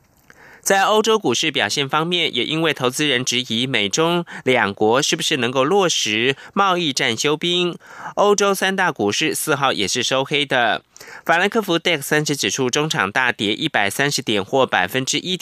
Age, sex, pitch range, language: 20-39, male, 120-170 Hz, German